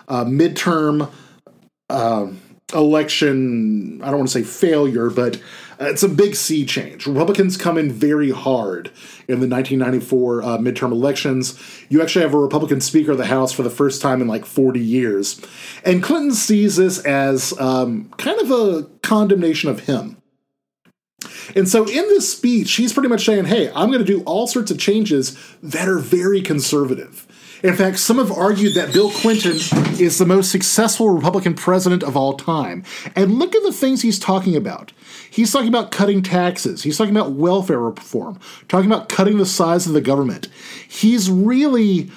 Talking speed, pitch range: 175 wpm, 140-205 Hz